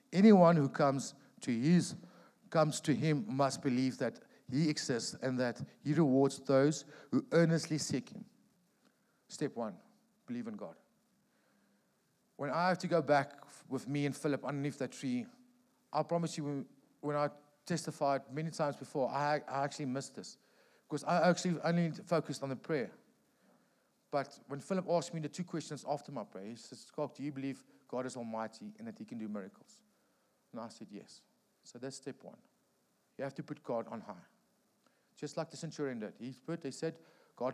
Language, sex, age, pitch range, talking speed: English, male, 50-69, 135-170 Hz, 180 wpm